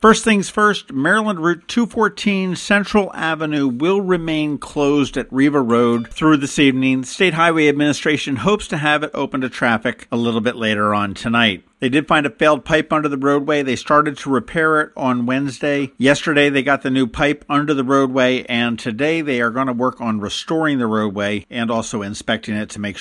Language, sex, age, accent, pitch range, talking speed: English, male, 50-69, American, 120-155 Hz, 195 wpm